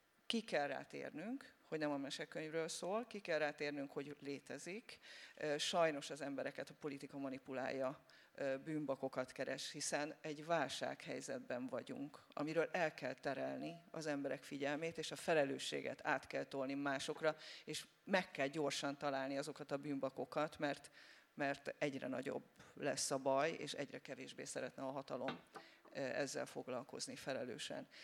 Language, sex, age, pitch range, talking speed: Hungarian, female, 40-59, 140-170 Hz, 135 wpm